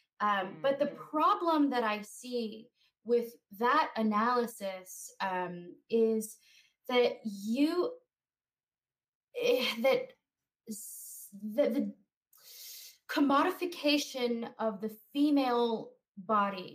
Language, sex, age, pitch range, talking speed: English, female, 20-39, 200-245 Hz, 70 wpm